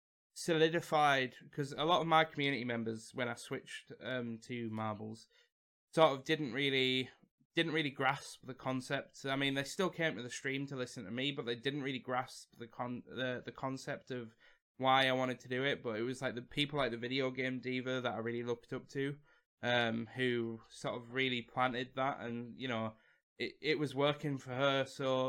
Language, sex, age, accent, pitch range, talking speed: English, male, 10-29, British, 120-140 Hz, 205 wpm